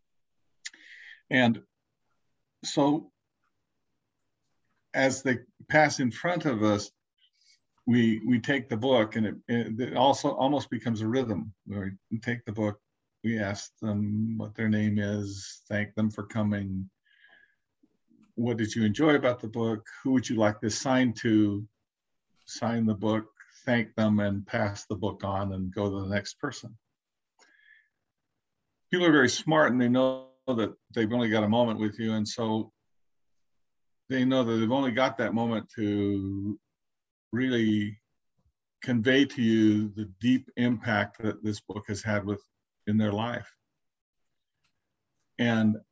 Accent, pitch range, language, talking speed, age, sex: American, 105-125 Hz, English, 145 wpm, 50-69, male